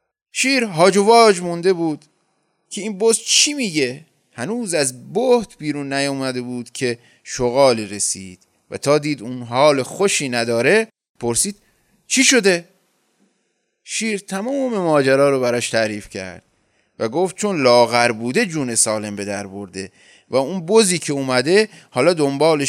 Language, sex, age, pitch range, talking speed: Persian, male, 30-49, 120-185 Hz, 140 wpm